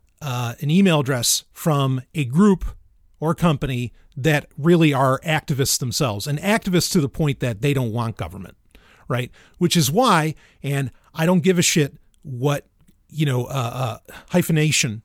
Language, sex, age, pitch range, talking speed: English, male, 40-59, 115-165 Hz, 160 wpm